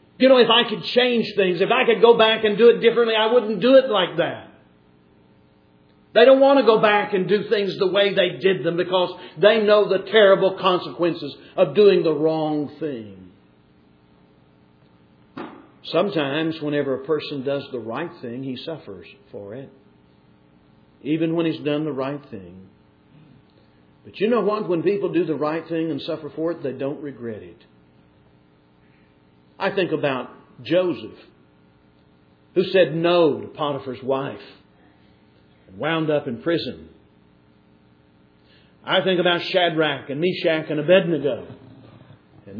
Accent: American